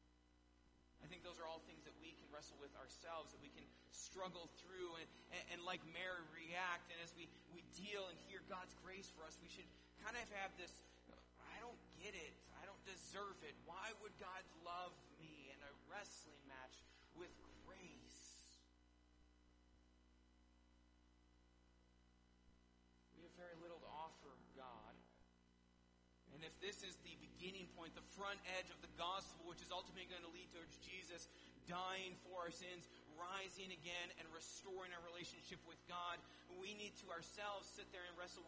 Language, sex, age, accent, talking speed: English, male, 30-49, American, 165 wpm